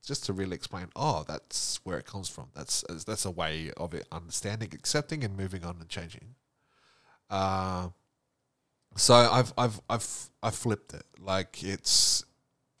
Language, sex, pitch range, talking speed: English, male, 90-120 Hz, 155 wpm